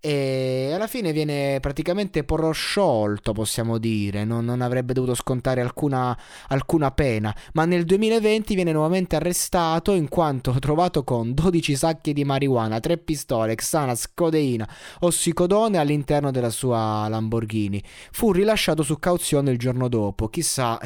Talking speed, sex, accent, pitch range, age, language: 135 wpm, male, native, 115-160 Hz, 20-39, Italian